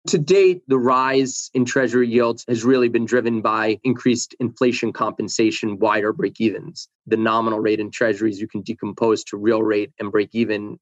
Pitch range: 115-130 Hz